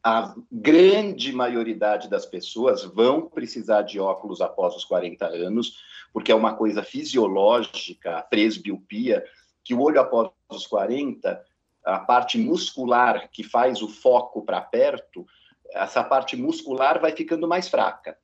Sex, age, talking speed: male, 50-69, 135 wpm